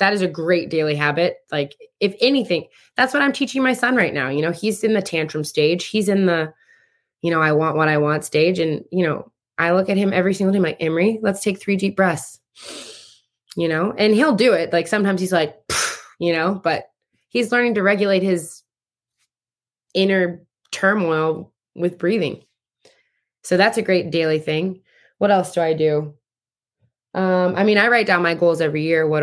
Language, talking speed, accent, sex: English, 195 wpm, American, female